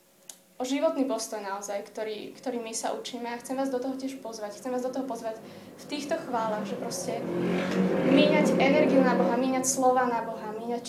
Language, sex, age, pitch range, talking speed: Slovak, female, 20-39, 225-255 Hz, 200 wpm